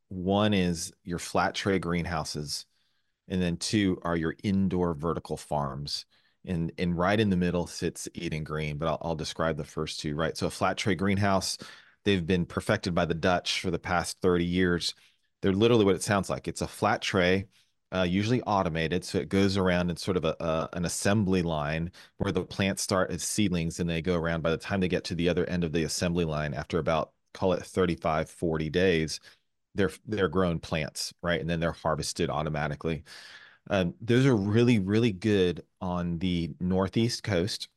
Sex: male